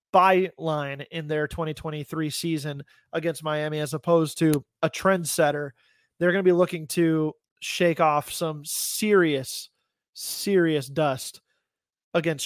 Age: 20-39